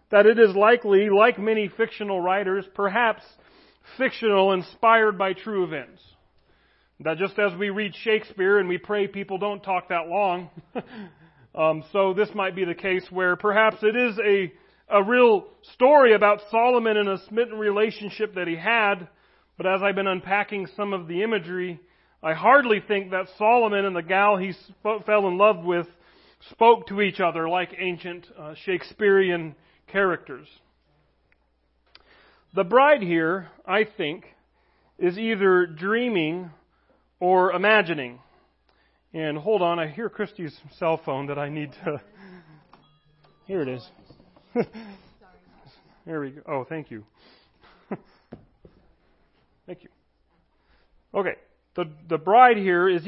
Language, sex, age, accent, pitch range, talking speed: English, male, 40-59, American, 170-215 Hz, 140 wpm